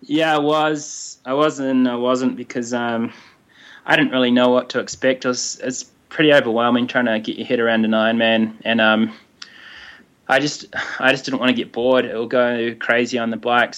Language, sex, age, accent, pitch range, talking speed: English, male, 20-39, Australian, 115-125 Hz, 210 wpm